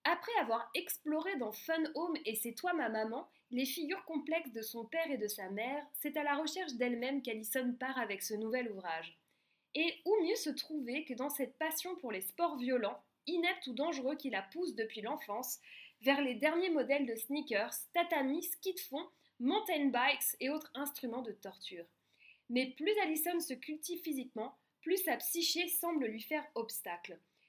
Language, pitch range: French, 230-315 Hz